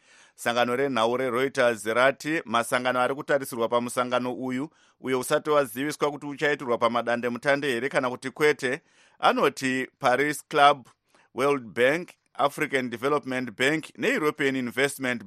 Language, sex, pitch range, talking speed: English, male, 120-140 Hz, 125 wpm